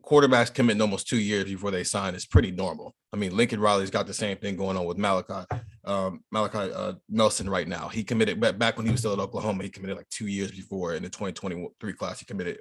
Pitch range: 100-120 Hz